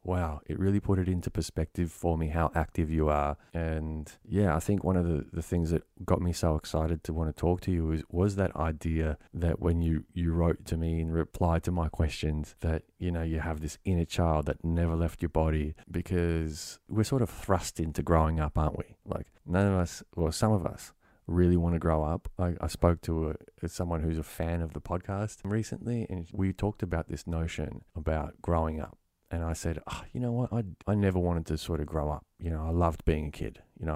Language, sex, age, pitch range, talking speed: English, male, 20-39, 80-90 Hz, 235 wpm